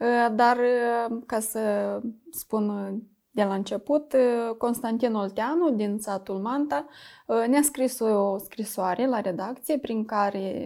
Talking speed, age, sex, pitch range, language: 115 wpm, 20-39, female, 200-255 Hz, Romanian